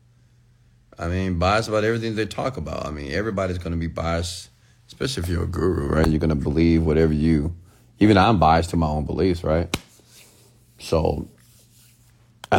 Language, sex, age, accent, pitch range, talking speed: English, male, 40-59, American, 80-115 Hz, 175 wpm